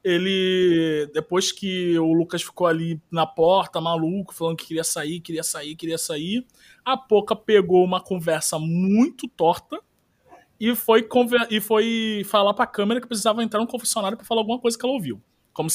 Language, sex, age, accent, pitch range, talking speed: Portuguese, male, 20-39, Brazilian, 175-230 Hz, 175 wpm